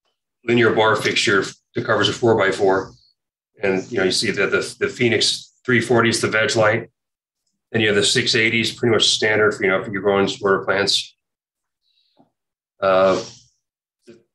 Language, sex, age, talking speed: English, male, 30-49, 165 wpm